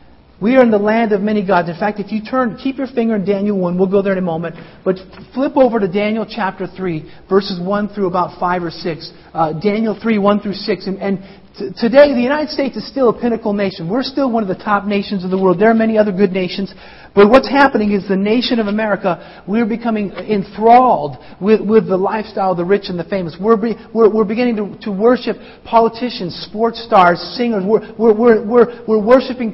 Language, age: English, 50-69